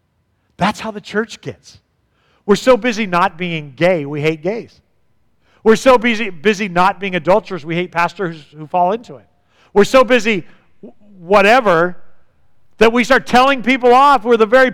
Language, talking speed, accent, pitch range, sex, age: English, 175 wpm, American, 135-210 Hz, male, 50-69